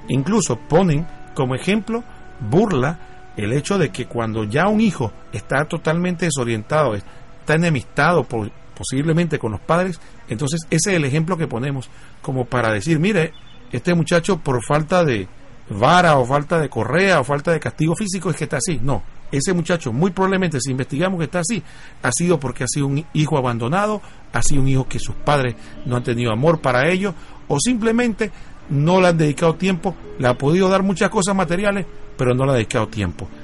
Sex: male